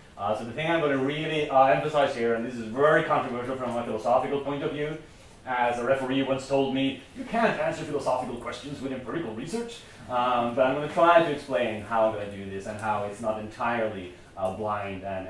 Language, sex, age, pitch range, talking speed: English, male, 30-49, 110-140 Hz, 220 wpm